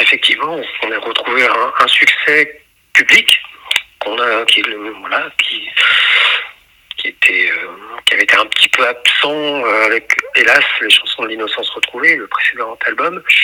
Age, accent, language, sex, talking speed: 40-59, French, French, male, 115 wpm